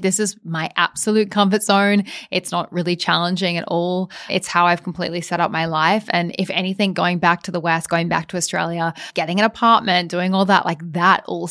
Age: 10-29